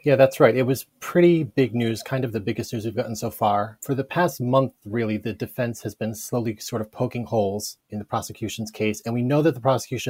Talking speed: 245 wpm